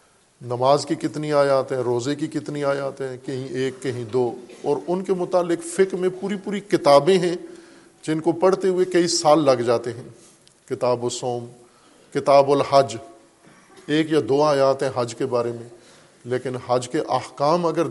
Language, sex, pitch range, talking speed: Urdu, male, 125-155 Hz, 170 wpm